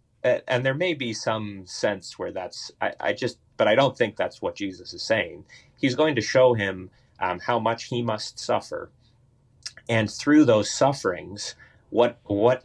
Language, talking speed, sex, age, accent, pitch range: English, 175 wpm, male, 30-49, American, 100-125 Hz